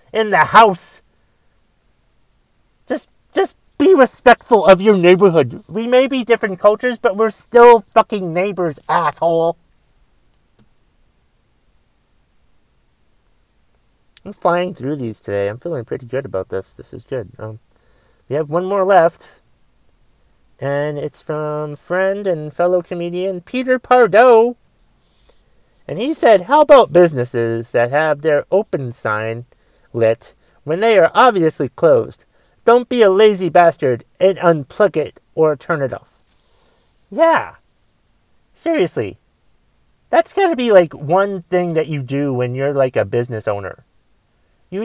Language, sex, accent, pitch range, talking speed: English, male, American, 150-220 Hz, 130 wpm